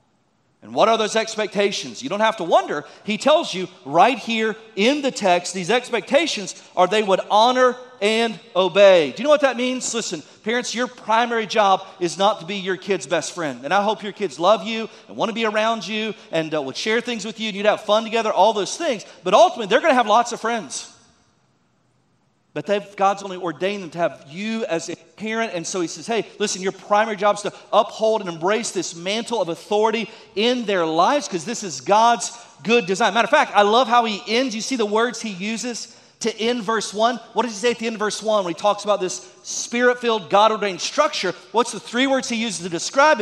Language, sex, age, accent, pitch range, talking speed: English, male, 40-59, American, 195-240 Hz, 230 wpm